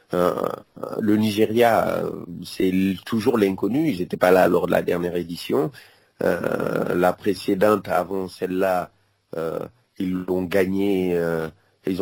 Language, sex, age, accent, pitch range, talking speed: French, male, 40-59, French, 95-105 Hz, 130 wpm